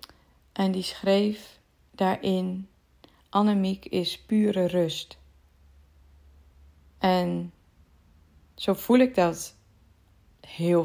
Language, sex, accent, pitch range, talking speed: Dutch, female, Dutch, 155-185 Hz, 75 wpm